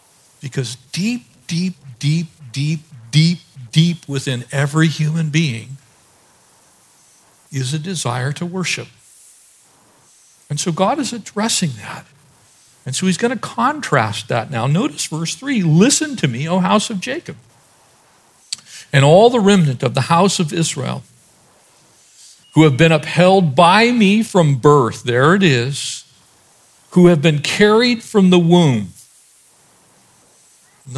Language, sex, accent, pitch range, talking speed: English, male, American, 130-175 Hz, 130 wpm